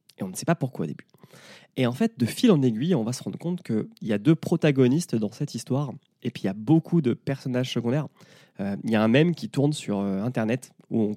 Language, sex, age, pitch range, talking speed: French, male, 20-39, 110-145 Hz, 270 wpm